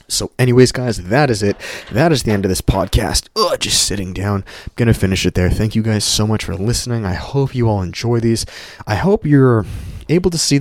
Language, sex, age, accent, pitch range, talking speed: English, male, 20-39, American, 100-130 Hz, 240 wpm